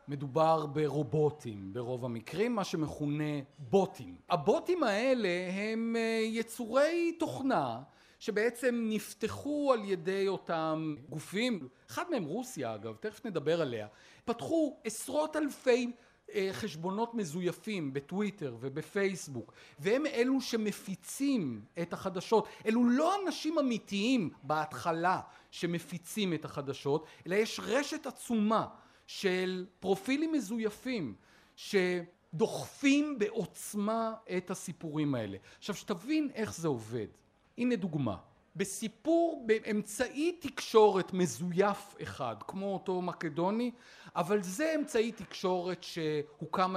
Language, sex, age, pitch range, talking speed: Hebrew, male, 40-59, 160-230 Hz, 100 wpm